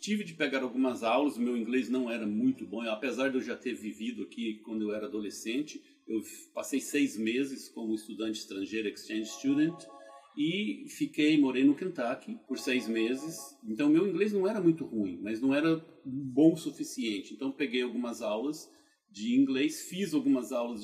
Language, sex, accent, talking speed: Portuguese, male, Brazilian, 180 wpm